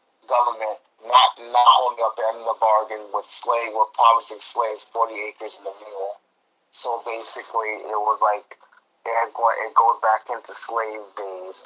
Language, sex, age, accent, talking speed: English, male, 30-49, American, 175 wpm